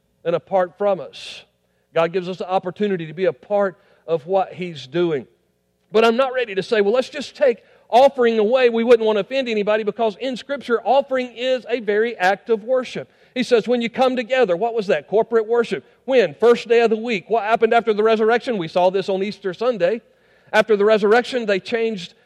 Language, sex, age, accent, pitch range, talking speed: English, male, 40-59, American, 155-230 Hz, 210 wpm